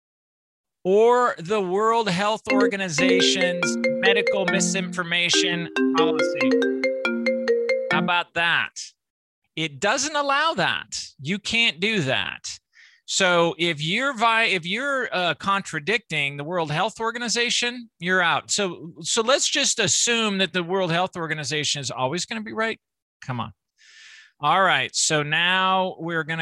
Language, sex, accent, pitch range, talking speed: English, male, American, 140-215 Hz, 130 wpm